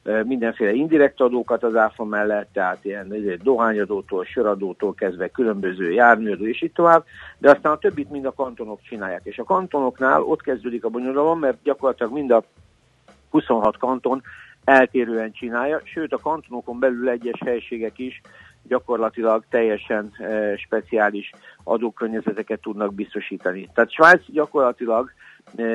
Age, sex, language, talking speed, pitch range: 50-69, male, Hungarian, 130 wpm, 110-130 Hz